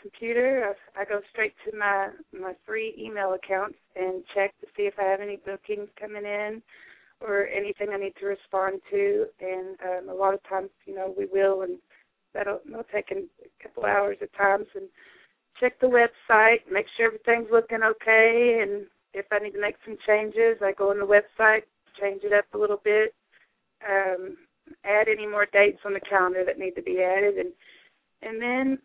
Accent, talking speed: American, 190 wpm